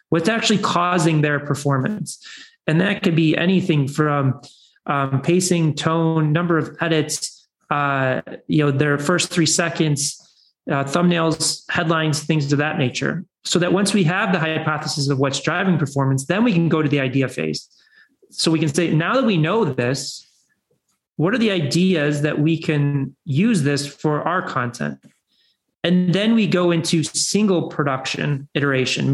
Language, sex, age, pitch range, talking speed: English, male, 30-49, 145-180 Hz, 165 wpm